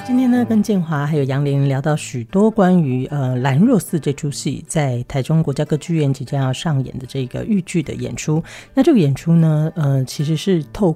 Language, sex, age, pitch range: Chinese, female, 40-59, 135-180 Hz